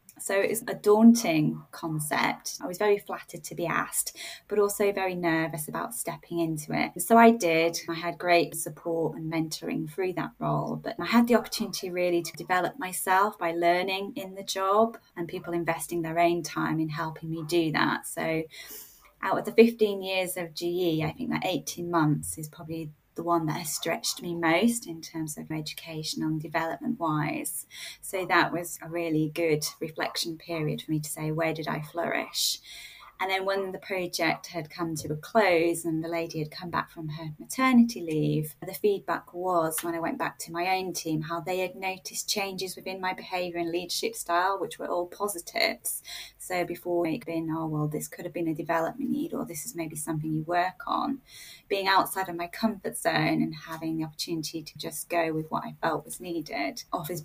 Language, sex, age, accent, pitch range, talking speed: English, female, 20-39, British, 160-185 Hz, 200 wpm